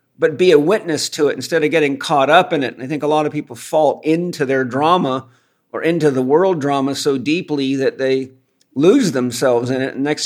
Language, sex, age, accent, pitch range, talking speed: English, male, 40-59, American, 135-155 Hz, 230 wpm